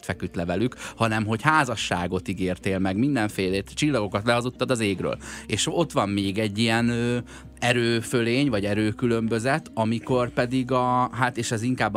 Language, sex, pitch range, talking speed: Hungarian, male, 95-120 Hz, 145 wpm